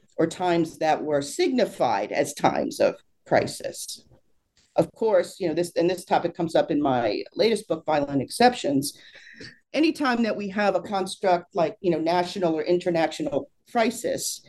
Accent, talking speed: American, 155 wpm